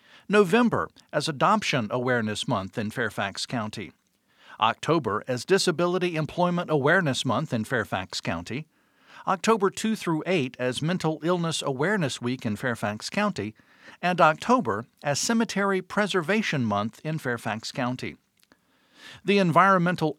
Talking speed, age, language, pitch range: 115 wpm, 50-69, English, 145-200 Hz